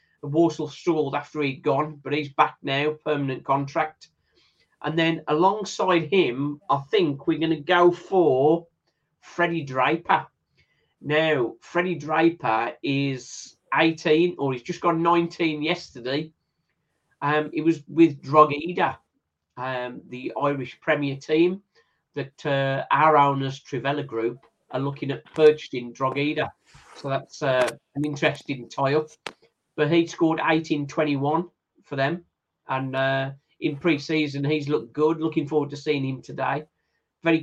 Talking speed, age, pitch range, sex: 130 wpm, 40-59, 135-165 Hz, male